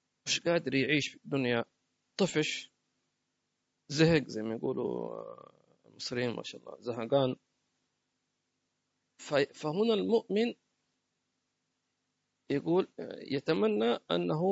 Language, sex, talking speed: English, male, 85 wpm